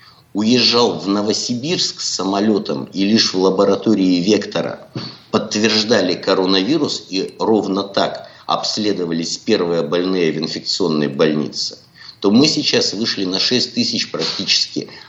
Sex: male